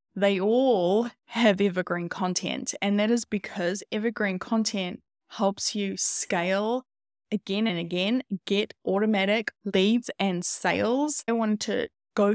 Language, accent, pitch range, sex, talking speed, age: English, Australian, 185-225 Hz, female, 125 wpm, 10-29